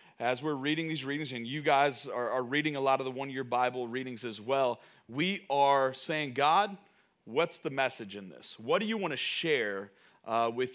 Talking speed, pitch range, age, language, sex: 205 wpm, 135-170 Hz, 40-59, English, male